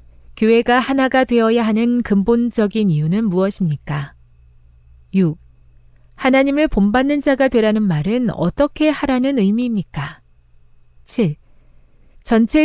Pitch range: 160-235 Hz